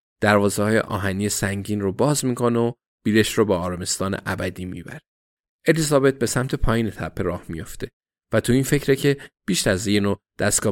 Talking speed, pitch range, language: 170 wpm, 95-125 Hz, Persian